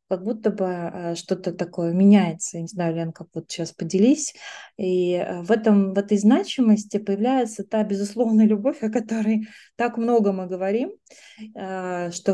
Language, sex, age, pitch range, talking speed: Russian, female, 20-39, 185-225 Hz, 145 wpm